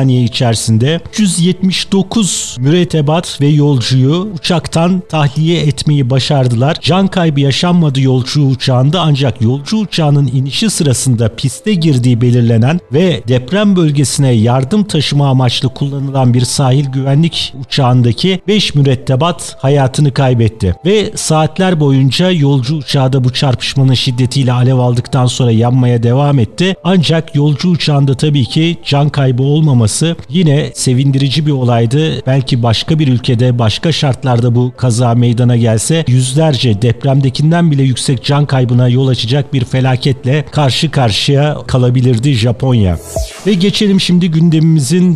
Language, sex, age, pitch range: Turkish, male, 50-69, 125-155 Hz